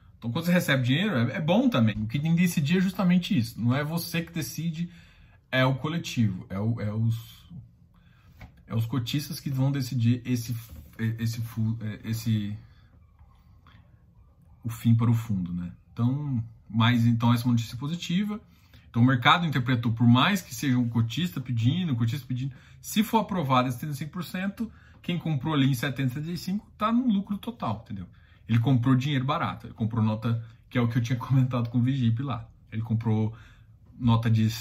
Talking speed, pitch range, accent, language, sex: 180 wpm, 115-150 Hz, Brazilian, Portuguese, male